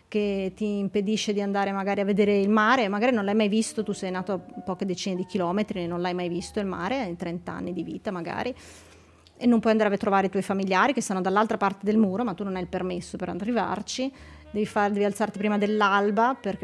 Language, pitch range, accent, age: Italian, 190-215 Hz, native, 30-49